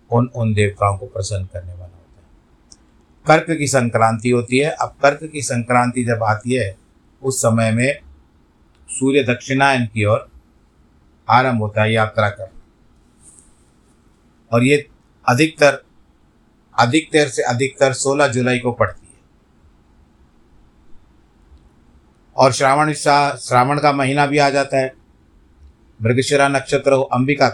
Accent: native